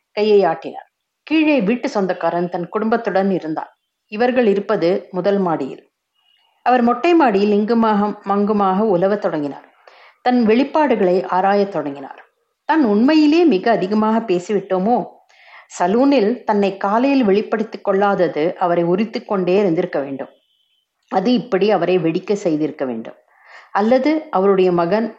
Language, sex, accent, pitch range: Tamil, female, native, 185-230 Hz